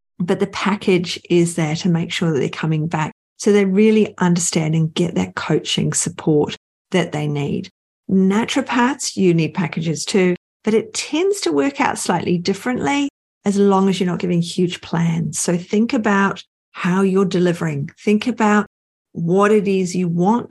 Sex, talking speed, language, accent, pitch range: female, 170 wpm, English, Australian, 170-205 Hz